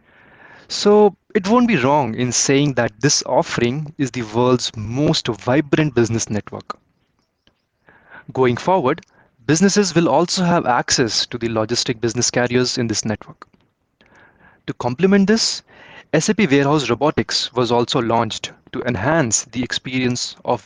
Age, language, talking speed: 20-39, English, 135 wpm